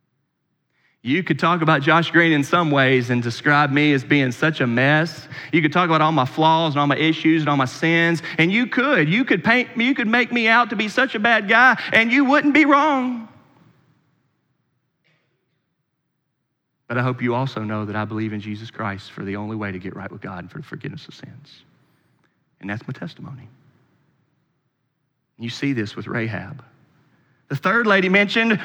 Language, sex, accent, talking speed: English, male, American, 195 wpm